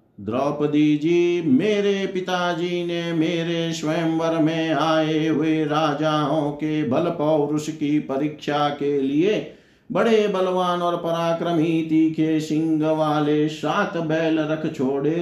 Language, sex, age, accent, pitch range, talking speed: Hindi, male, 50-69, native, 155-190 Hz, 105 wpm